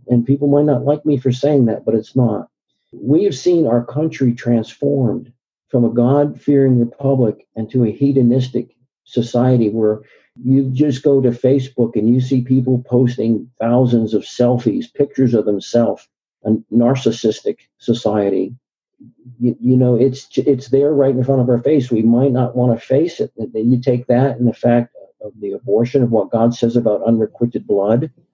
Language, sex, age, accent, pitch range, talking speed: English, male, 50-69, American, 115-135 Hz, 170 wpm